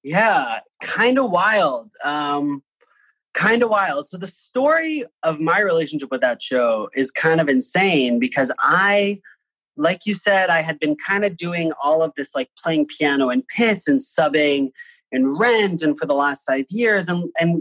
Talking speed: 175 wpm